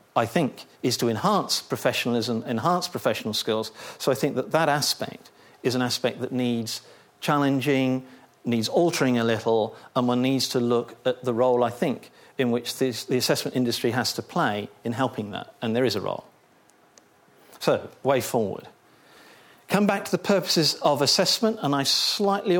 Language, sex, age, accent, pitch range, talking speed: English, male, 50-69, British, 120-160 Hz, 175 wpm